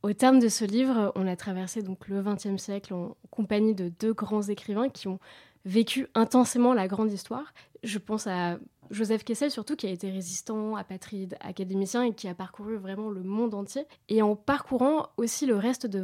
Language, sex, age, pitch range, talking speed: French, female, 20-39, 195-240 Hz, 195 wpm